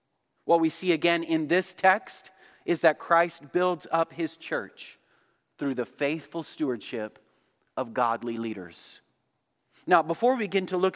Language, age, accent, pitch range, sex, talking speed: English, 30-49, American, 155-195 Hz, male, 150 wpm